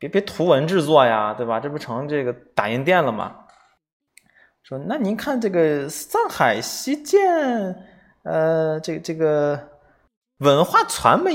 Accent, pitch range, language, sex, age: native, 110-160 Hz, Chinese, male, 20-39